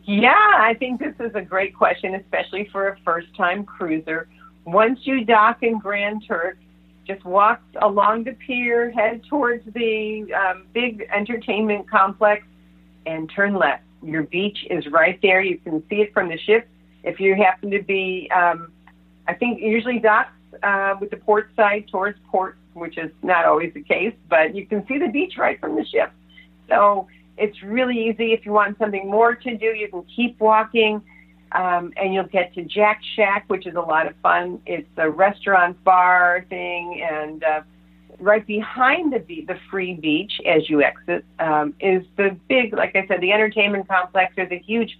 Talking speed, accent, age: 180 wpm, American, 50-69